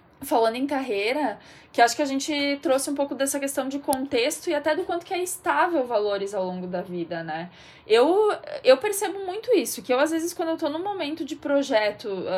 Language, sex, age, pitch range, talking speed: Portuguese, female, 10-29, 230-320 Hz, 215 wpm